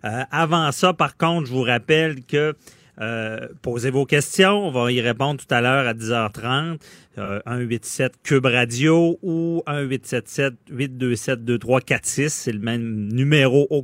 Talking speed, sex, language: 150 wpm, male, French